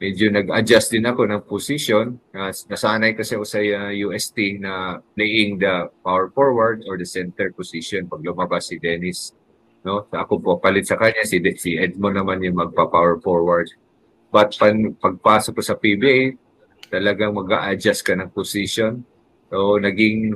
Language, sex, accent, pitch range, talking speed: English, male, Filipino, 95-110 Hz, 150 wpm